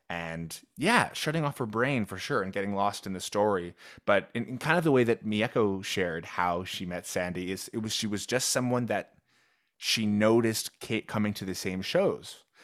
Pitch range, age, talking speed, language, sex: 95-115 Hz, 20-39, 210 wpm, English, male